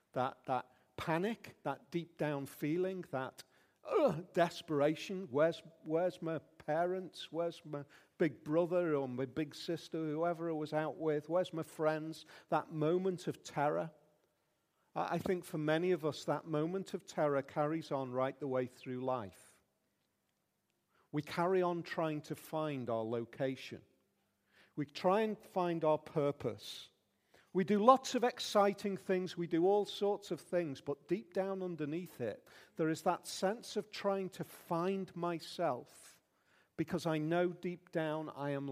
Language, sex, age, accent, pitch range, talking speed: English, male, 50-69, British, 145-180 Hz, 155 wpm